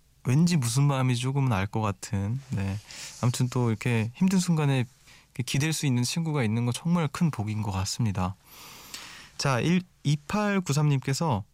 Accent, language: native, Korean